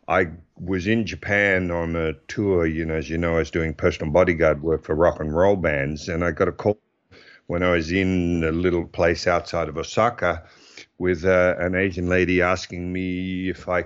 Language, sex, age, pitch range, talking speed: English, male, 50-69, 85-105 Hz, 205 wpm